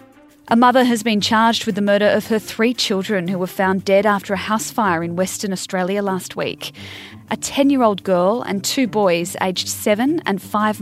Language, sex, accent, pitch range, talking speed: English, female, Australian, 185-230 Hz, 195 wpm